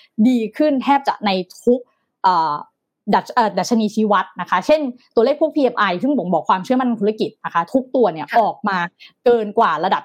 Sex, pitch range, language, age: female, 205-270 Hz, Thai, 20-39